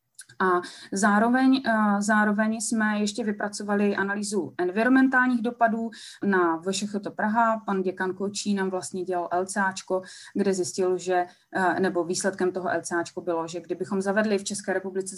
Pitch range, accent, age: 180-210 Hz, native, 30-49